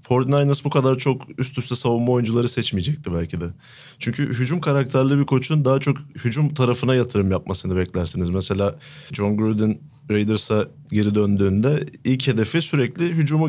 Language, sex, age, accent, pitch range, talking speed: Turkish, male, 30-49, native, 105-140 Hz, 145 wpm